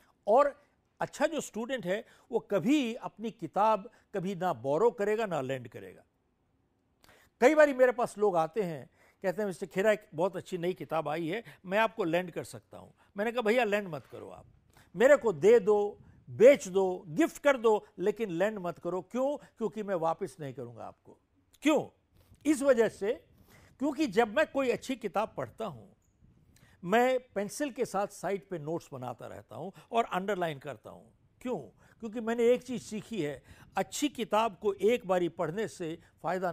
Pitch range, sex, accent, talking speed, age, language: 165-235 Hz, male, native, 175 wpm, 60-79, Hindi